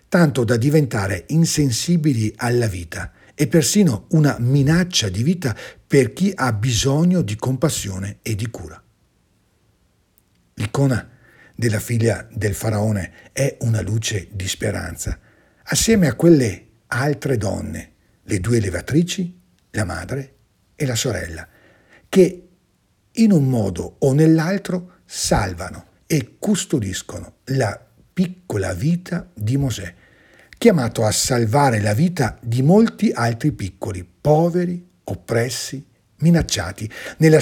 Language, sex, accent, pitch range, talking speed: Italian, male, native, 105-150 Hz, 115 wpm